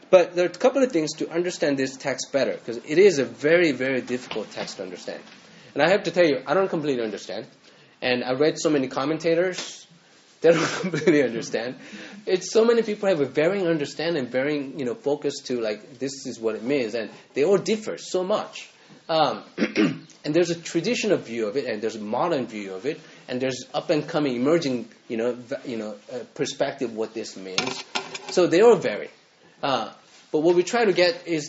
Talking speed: 210 wpm